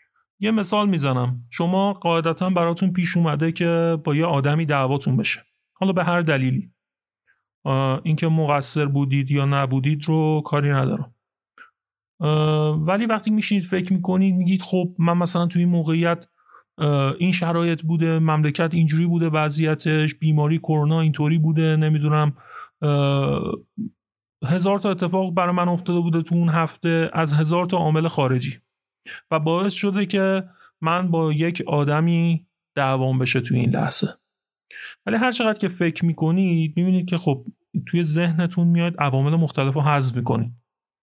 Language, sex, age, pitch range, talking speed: Persian, male, 40-59, 145-175 Hz, 135 wpm